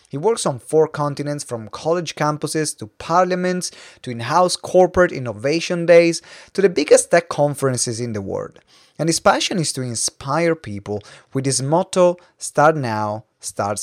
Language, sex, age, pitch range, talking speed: English, male, 30-49, 115-155 Hz, 155 wpm